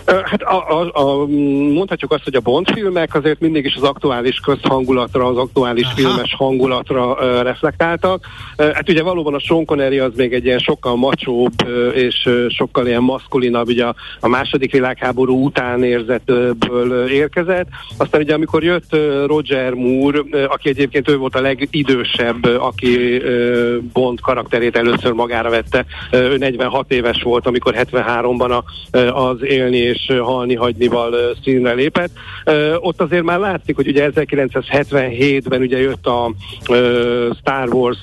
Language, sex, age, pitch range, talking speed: Hungarian, male, 60-79, 125-140 Hz, 160 wpm